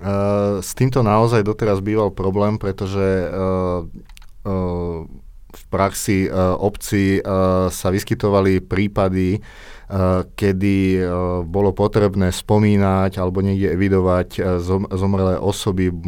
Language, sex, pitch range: Slovak, male, 95-105 Hz